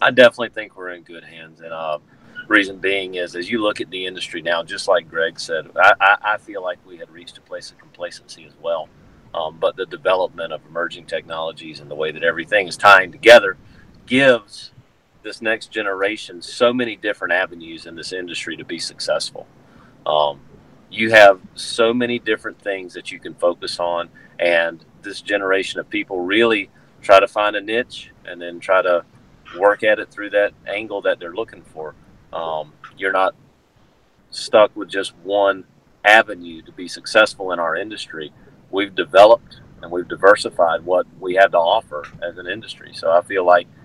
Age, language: 40-59, English